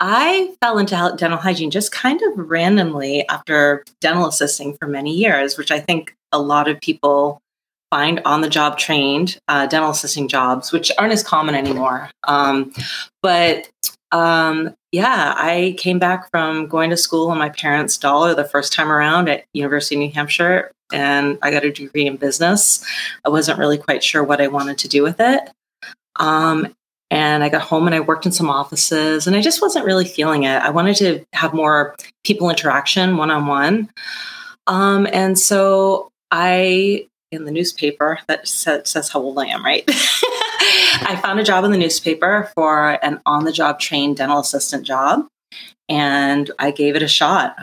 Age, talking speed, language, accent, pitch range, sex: 30-49, 175 wpm, English, American, 145-180 Hz, female